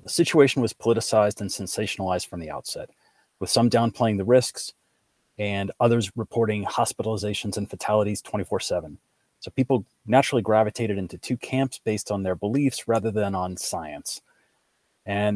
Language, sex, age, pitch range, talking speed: English, male, 30-49, 95-120 Hz, 150 wpm